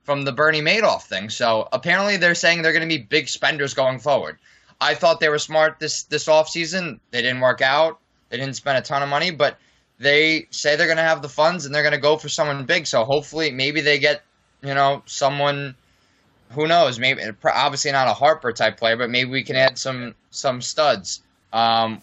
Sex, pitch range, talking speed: male, 120-150 Hz, 220 wpm